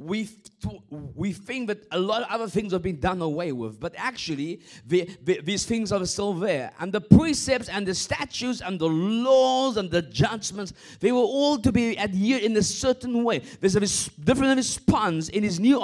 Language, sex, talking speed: English, male, 195 wpm